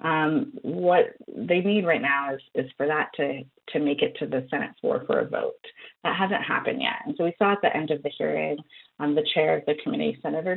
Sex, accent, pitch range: female, American, 150-200 Hz